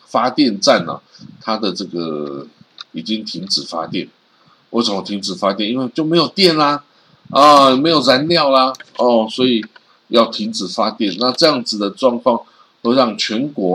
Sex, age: male, 50-69